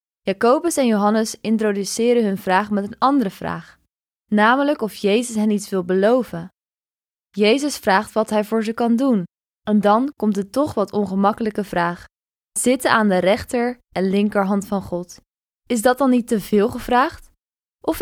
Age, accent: 20-39, Dutch